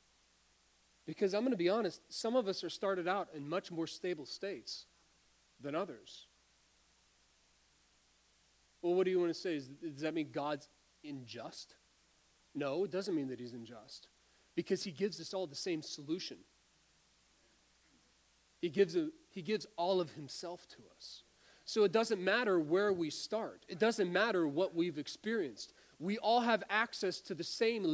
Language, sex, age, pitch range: English, male, 40-59, 135-200 Hz